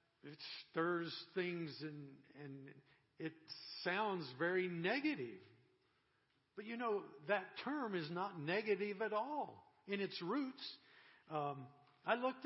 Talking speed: 120 wpm